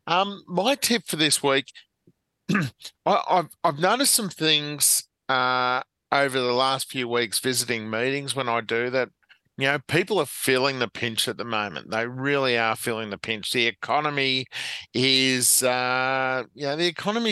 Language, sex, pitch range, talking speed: English, male, 120-150 Hz, 165 wpm